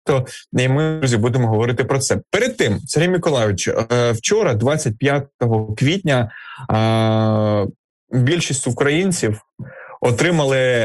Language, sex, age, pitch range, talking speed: Ukrainian, male, 20-39, 110-140 Hz, 95 wpm